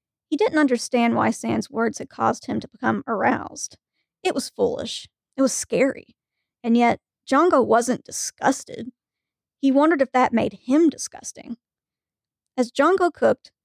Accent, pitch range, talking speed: American, 230-275 Hz, 145 wpm